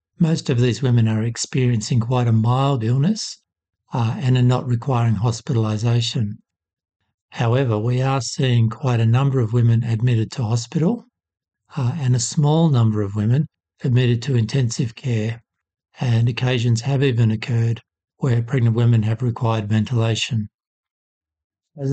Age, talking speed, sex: 60-79, 140 wpm, male